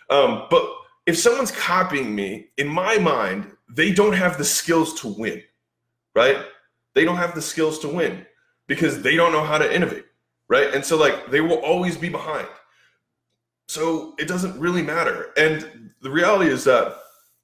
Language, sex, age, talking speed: English, male, 20-39, 170 wpm